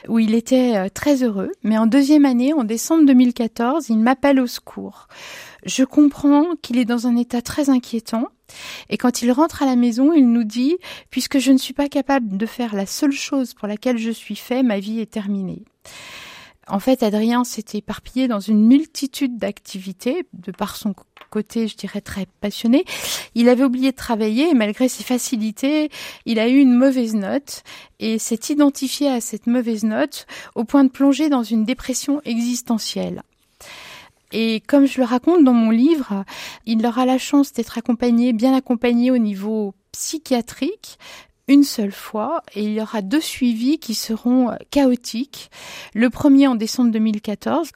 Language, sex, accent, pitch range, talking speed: French, female, French, 215-265 Hz, 175 wpm